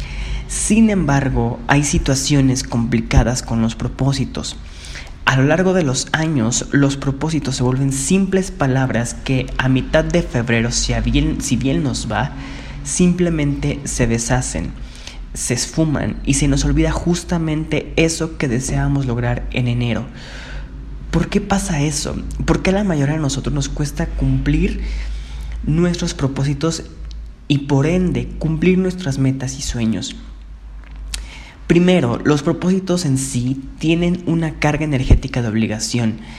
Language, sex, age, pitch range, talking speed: Spanish, male, 30-49, 120-155 Hz, 135 wpm